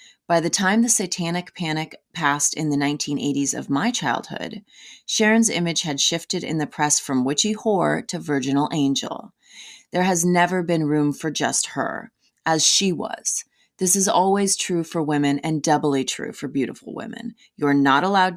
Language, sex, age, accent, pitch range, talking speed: English, female, 30-49, American, 145-180 Hz, 170 wpm